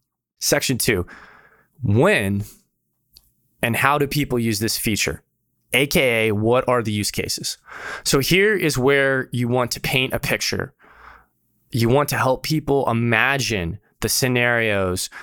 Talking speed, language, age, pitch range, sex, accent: 135 wpm, English, 20-39, 105-135 Hz, male, American